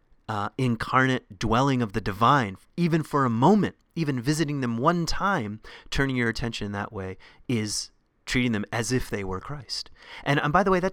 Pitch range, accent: 100-130 Hz, American